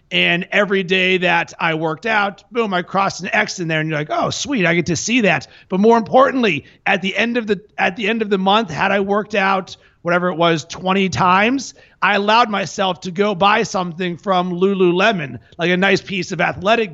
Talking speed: 220 wpm